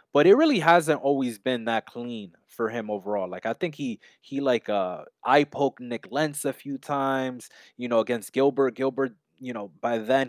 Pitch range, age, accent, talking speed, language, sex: 115-150 Hz, 20-39, American, 200 wpm, English, male